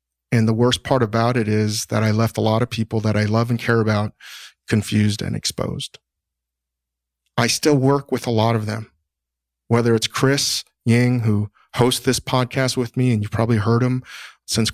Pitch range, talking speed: 105-125 Hz, 190 wpm